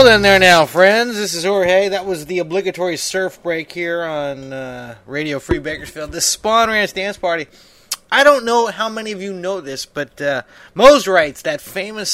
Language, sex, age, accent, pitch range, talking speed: English, male, 20-39, American, 140-185 Hz, 195 wpm